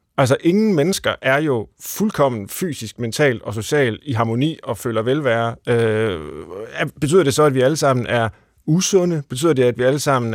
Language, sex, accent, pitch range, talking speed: Danish, male, native, 110-145 Hz, 180 wpm